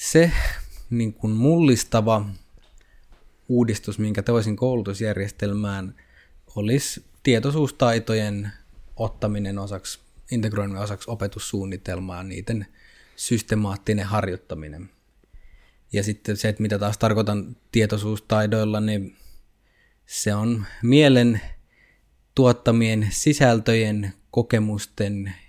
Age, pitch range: 20-39, 100-115 Hz